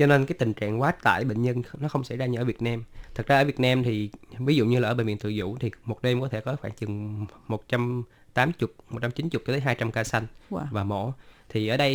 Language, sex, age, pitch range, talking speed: Vietnamese, male, 20-39, 110-130 Hz, 270 wpm